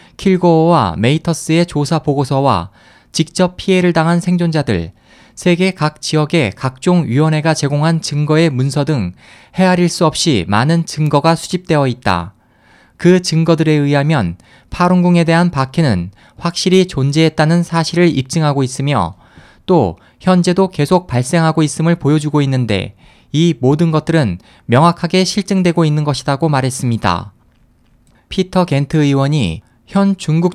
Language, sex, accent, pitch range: Korean, male, native, 130-175 Hz